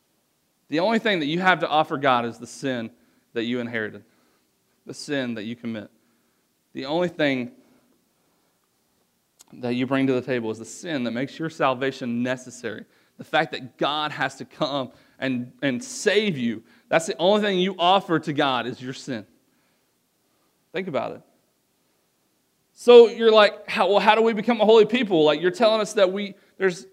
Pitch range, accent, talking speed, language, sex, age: 130-205 Hz, American, 180 wpm, English, male, 30-49